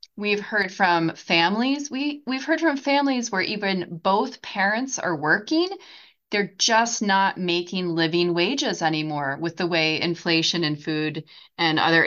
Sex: female